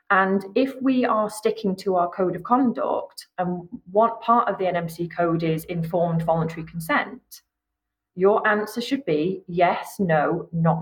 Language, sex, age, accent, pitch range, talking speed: English, female, 30-49, British, 165-220 Hz, 155 wpm